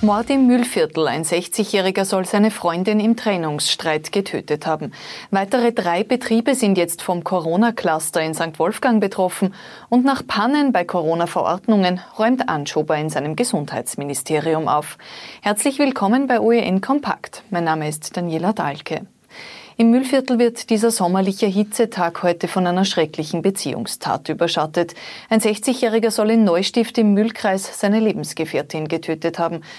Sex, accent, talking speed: female, Swiss, 135 wpm